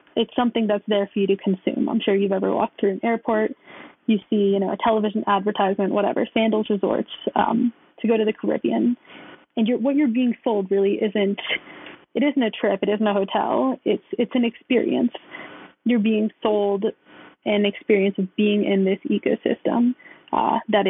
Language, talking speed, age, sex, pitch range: English, 185 wpm, 20-39, female, 200-240 Hz